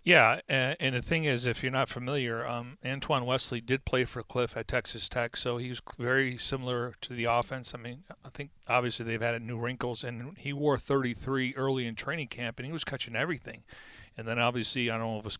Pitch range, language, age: 120-135 Hz, English, 40-59